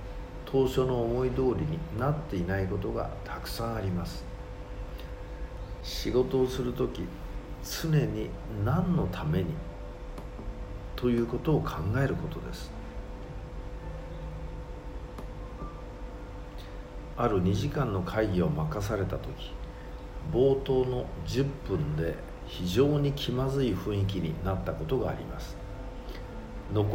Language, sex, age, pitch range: Japanese, male, 50-69, 95-130 Hz